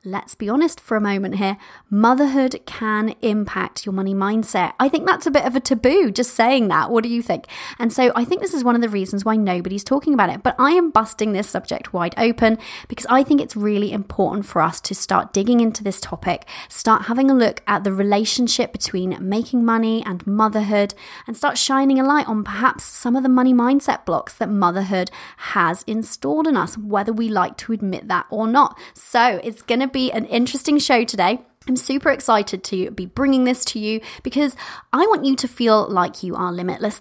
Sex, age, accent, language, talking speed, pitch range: female, 30-49, British, English, 215 wpm, 200-265 Hz